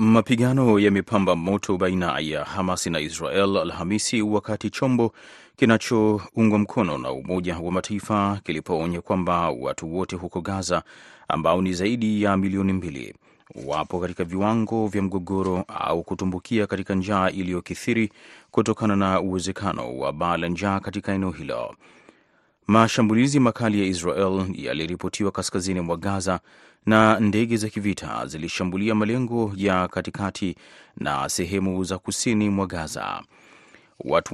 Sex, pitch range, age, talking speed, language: male, 90-110 Hz, 30-49, 130 wpm, Swahili